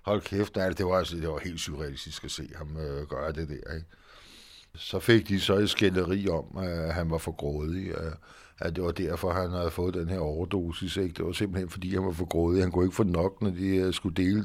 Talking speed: 235 wpm